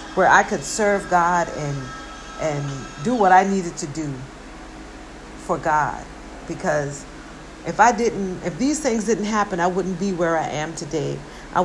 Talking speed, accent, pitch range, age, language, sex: 165 wpm, American, 160-210 Hz, 50-69, English, female